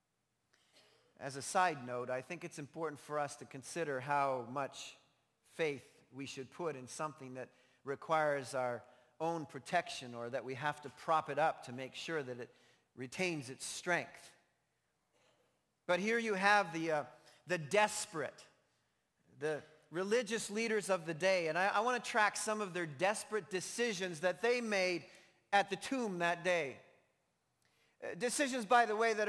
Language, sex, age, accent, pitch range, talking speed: English, male, 40-59, American, 140-200 Hz, 160 wpm